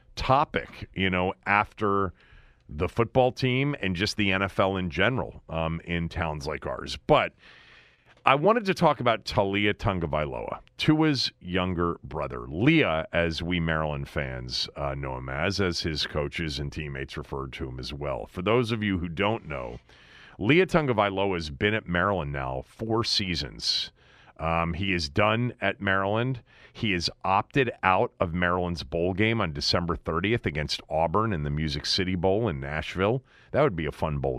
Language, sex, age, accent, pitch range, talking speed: English, male, 40-59, American, 75-105 Hz, 170 wpm